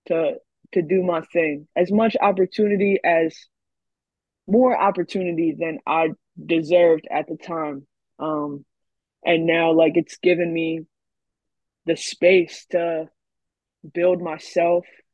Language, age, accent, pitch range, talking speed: English, 20-39, American, 155-190 Hz, 115 wpm